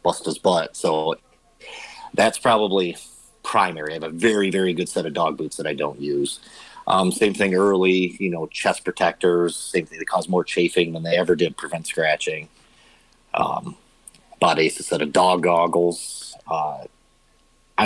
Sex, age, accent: male, 40-59, American